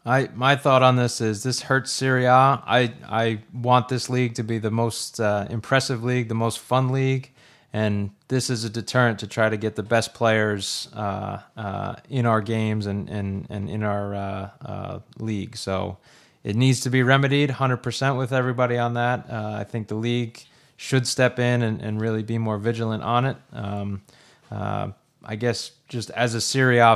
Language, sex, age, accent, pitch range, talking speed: English, male, 20-39, American, 105-130 Hz, 190 wpm